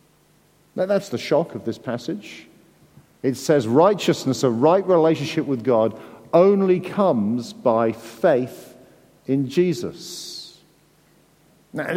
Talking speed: 110 wpm